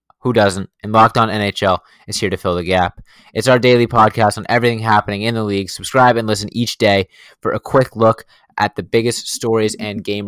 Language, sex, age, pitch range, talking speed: English, male, 20-39, 95-110 Hz, 215 wpm